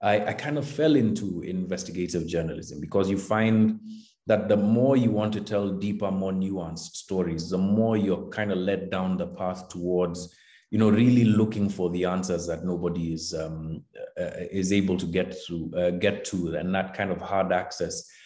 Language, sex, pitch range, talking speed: English, male, 90-105 Hz, 190 wpm